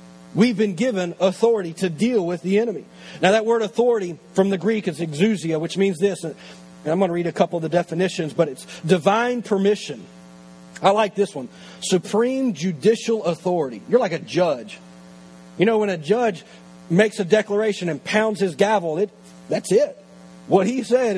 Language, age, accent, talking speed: English, 40-59, American, 180 wpm